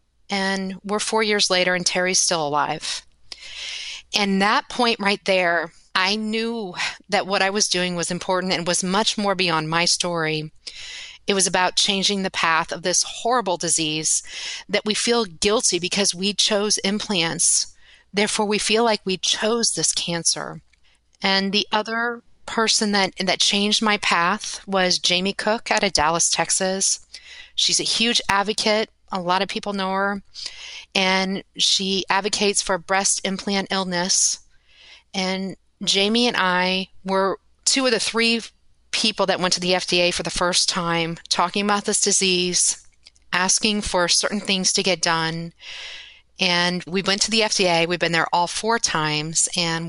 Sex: female